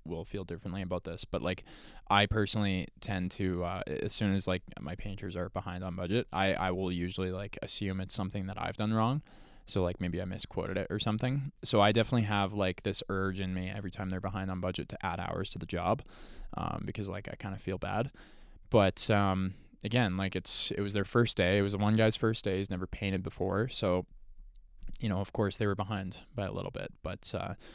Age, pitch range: 20-39, 95-105 Hz